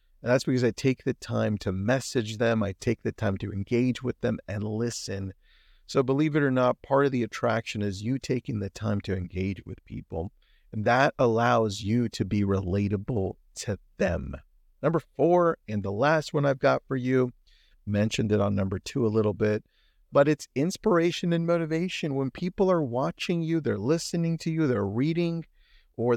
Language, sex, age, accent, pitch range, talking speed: English, male, 40-59, American, 100-150 Hz, 190 wpm